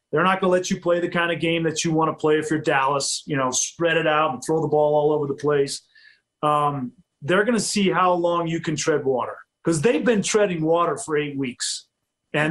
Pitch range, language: 150-195 Hz, English